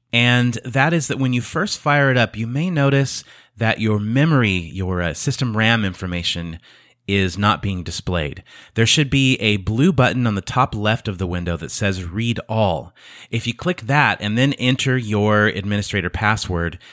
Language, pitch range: English, 100-130 Hz